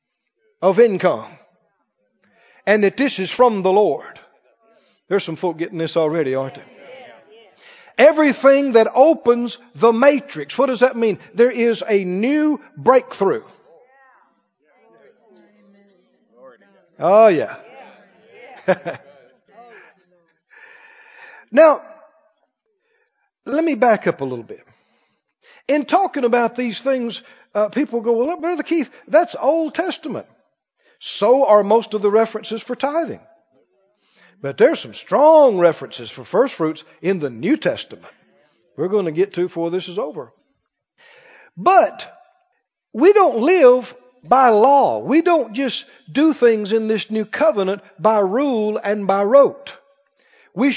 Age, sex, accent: 60-79, male, American